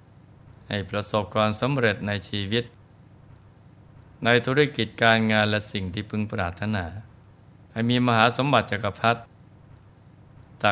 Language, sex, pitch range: Thai, male, 105-125 Hz